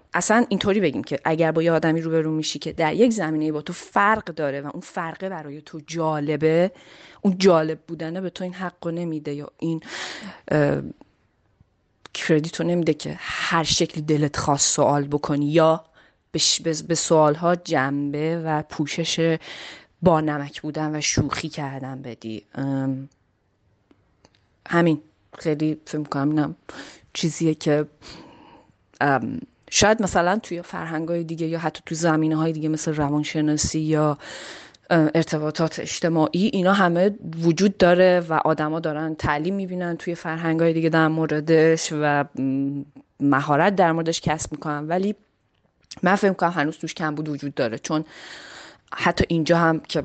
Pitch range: 150-170 Hz